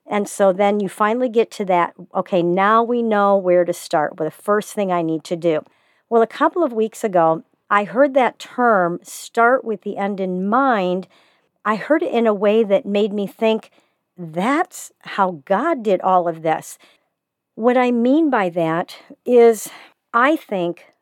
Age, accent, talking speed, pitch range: 50-69, American, 185 wpm, 195-245 Hz